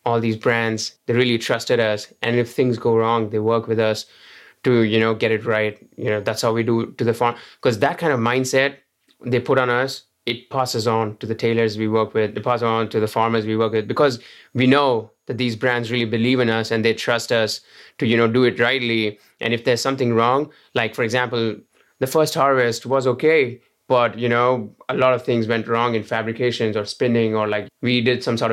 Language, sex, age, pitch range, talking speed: English, male, 20-39, 115-130 Hz, 235 wpm